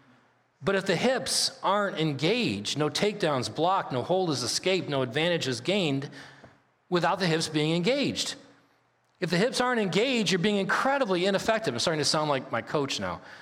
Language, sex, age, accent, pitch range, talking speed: English, male, 40-59, American, 140-195 Hz, 175 wpm